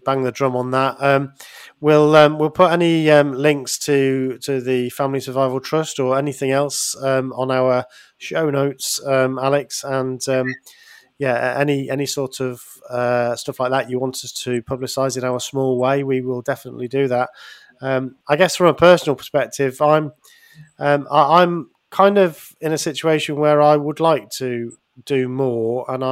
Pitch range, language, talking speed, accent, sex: 125-145 Hz, English, 180 wpm, British, male